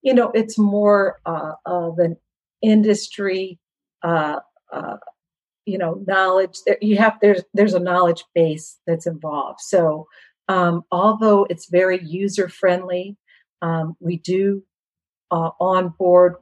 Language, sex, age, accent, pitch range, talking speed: English, female, 50-69, American, 165-185 Hz, 130 wpm